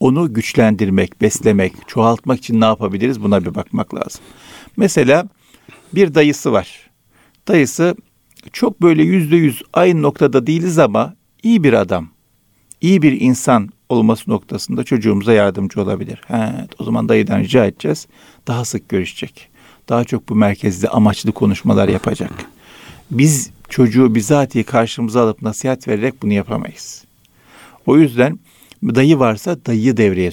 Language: Turkish